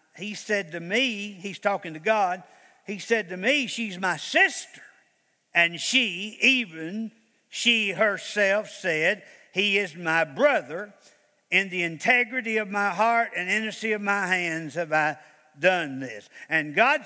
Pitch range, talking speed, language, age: 195-255 Hz, 150 wpm, English, 50-69